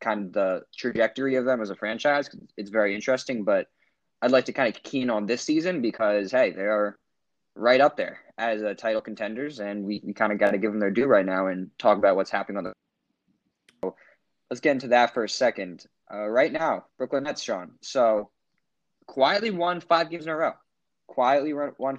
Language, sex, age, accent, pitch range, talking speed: English, male, 20-39, American, 115-160 Hz, 210 wpm